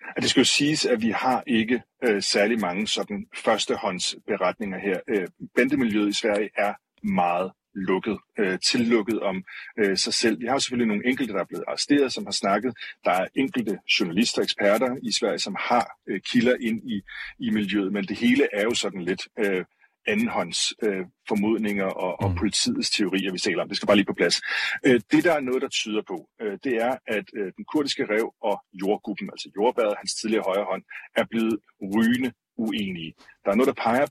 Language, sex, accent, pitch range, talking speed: Danish, male, native, 105-135 Hz, 195 wpm